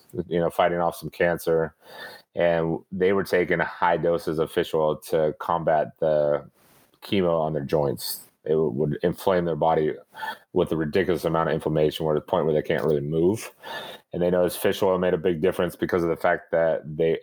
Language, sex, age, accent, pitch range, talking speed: English, male, 30-49, American, 80-85 Hz, 195 wpm